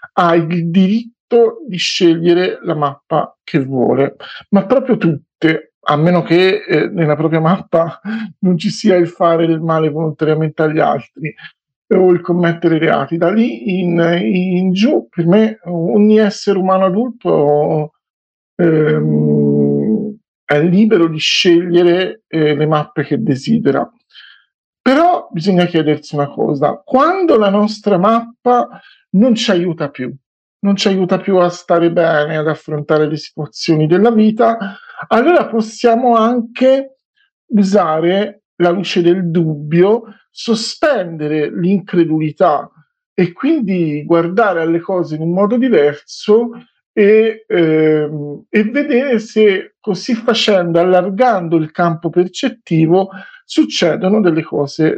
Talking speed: 125 wpm